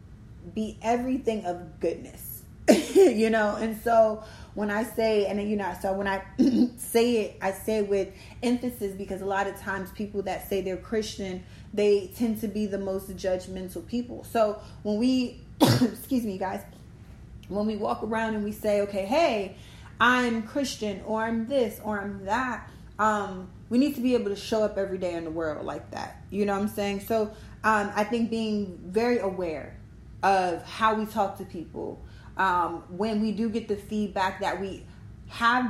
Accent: American